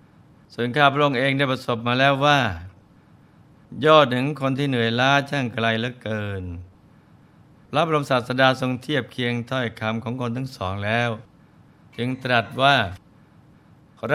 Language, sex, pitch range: Thai, male, 110-135 Hz